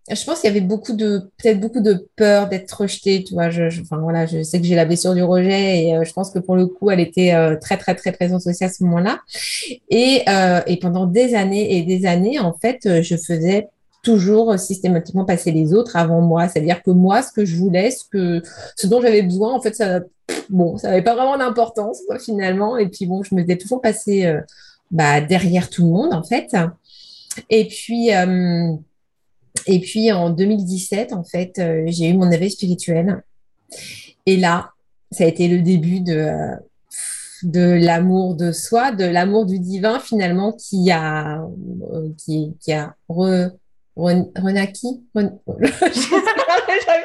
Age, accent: 30-49, French